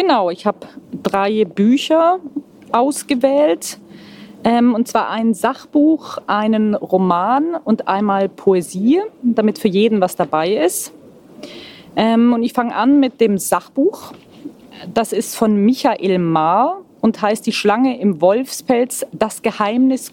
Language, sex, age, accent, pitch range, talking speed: Swedish, female, 30-49, German, 205-265 Hz, 120 wpm